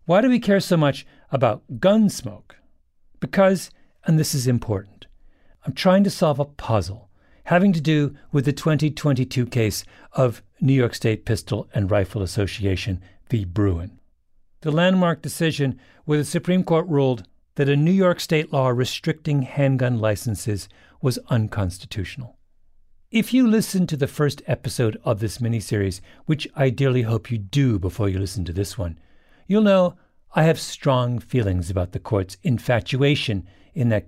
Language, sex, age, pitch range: English, male, 50-69, 100-155 Hz